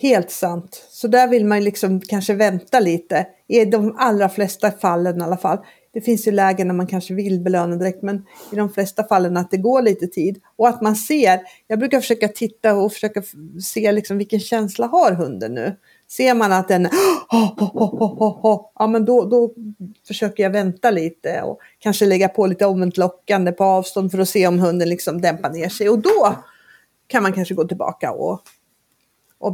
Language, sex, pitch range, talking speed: Swedish, female, 185-225 Hz, 185 wpm